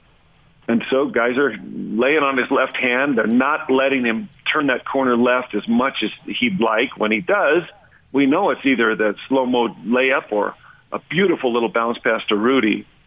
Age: 50-69